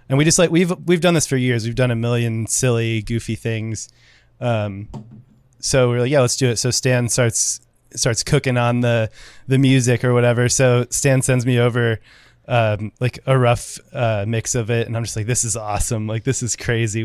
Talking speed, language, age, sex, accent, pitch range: 210 wpm, English, 20-39, male, American, 110-125 Hz